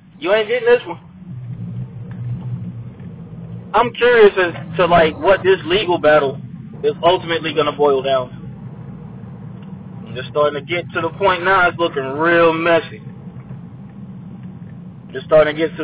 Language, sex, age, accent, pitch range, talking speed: English, male, 20-39, American, 150-190 Hz, 150 wpm